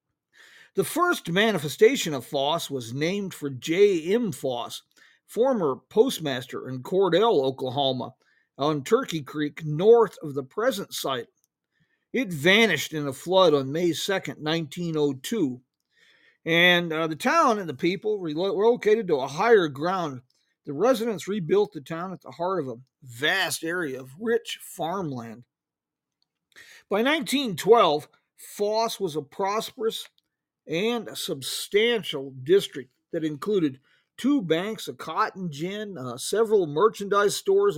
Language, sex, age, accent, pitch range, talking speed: English, male, 50-69, American, 150-230 Hz, 125 wpm